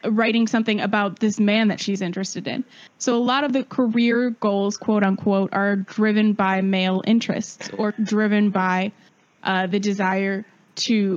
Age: 10-29